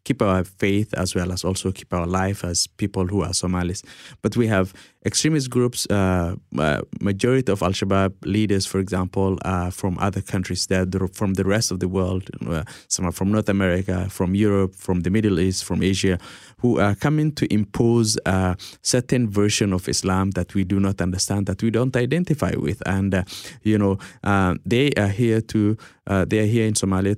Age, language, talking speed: 20-39, English, 190 wpm